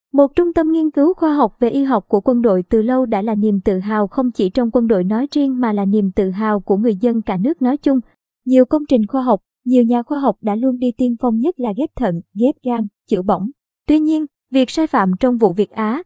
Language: Vietnamese